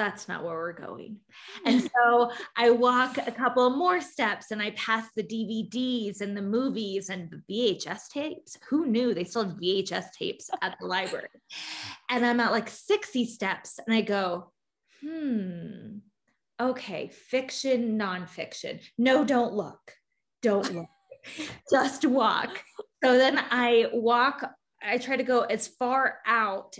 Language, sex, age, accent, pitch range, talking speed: English, female, 20-39, American, 205-250 Hz, 150 wpm